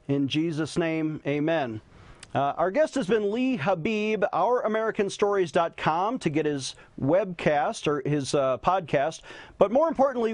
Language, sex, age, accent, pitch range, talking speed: English, male, 40-59, American, 165-215 Hz, 140 wpm